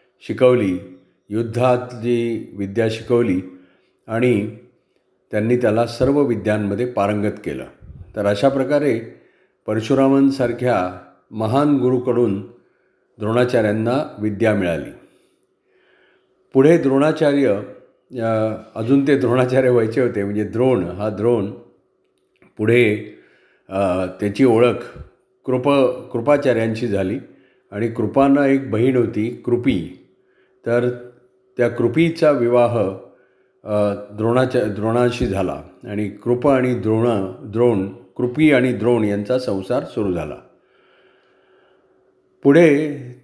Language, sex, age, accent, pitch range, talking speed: Marathi, male, 50-69, native, 105-135 Hz, 90 wpm